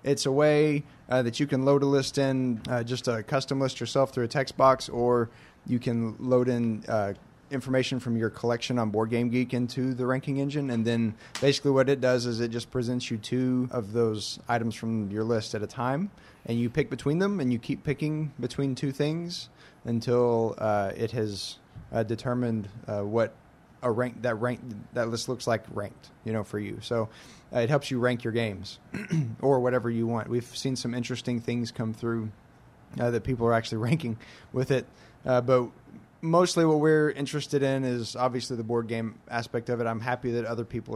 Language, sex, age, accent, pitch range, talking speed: English, male, 20-39, American, 115-130 Hz, 200 wpm